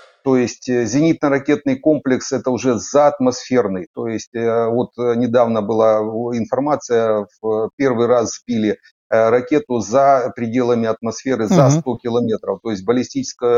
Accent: native